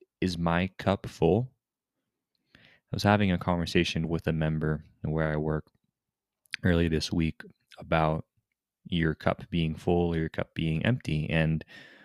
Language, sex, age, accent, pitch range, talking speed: English, male, 20-39, American, 80-95 Hz, 145 wpm